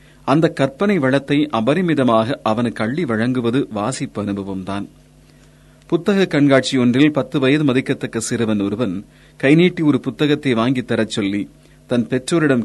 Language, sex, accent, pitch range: Tamil, male, native, 110-145 Hz